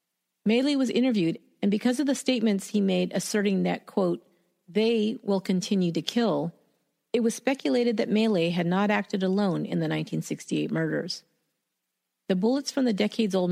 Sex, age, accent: female, 40-59, American